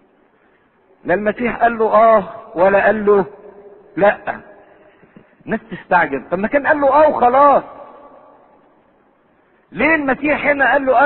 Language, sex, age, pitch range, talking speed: English, male, 50-69, 225-275 Hz, 100 wpm